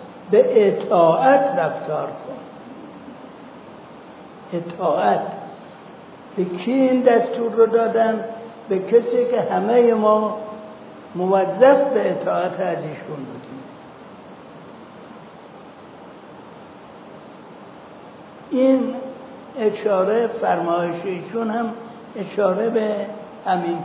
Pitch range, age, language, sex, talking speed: 185-235 Hz, 60-79, Persian, male, 70 wpm